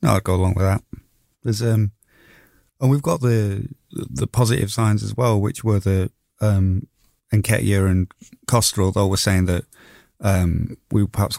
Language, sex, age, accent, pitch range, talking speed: English, male, 30-49, British, 90-110 Hz, 165 wpm